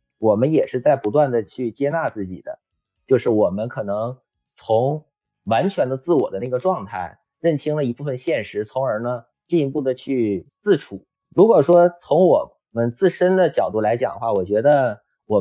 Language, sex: Chinese, male